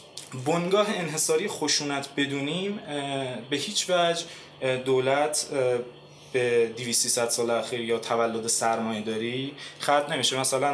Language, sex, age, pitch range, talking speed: Persian, male, 20-39, 130-160 Hz, 105 wpm